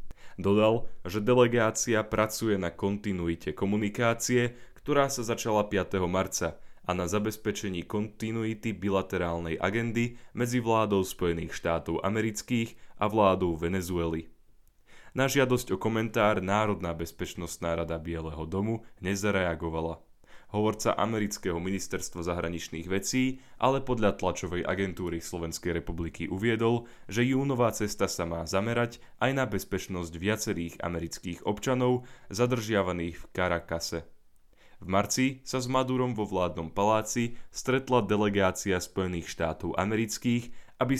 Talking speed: 115 wpm